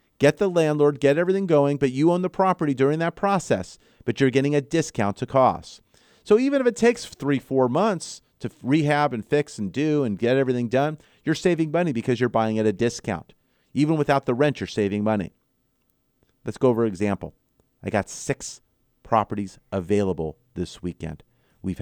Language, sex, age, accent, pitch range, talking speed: English, male, 40-59, American, 95-135 Hz, 185 wpm